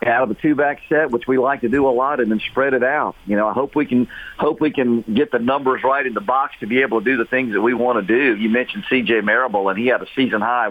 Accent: American